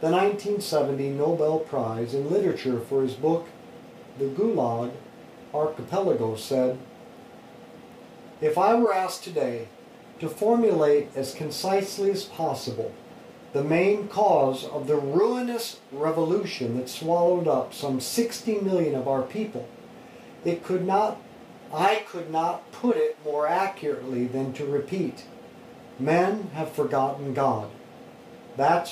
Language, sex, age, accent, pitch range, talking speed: English, male, 50-69, American, 140-195 Hz, 120 wpm